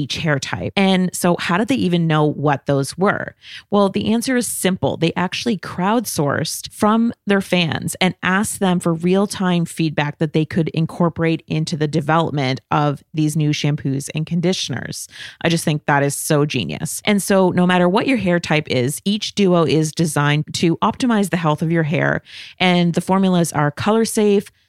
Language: English